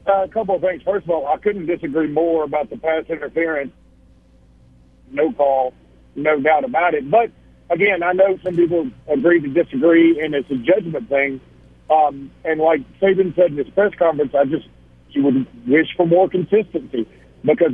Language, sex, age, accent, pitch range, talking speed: English, male, 50-69, American, 140-185 Hz, 185 wpm